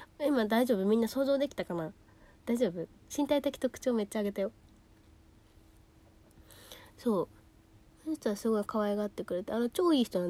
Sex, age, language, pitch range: female, 20-39, Japanese, 185-260 Hz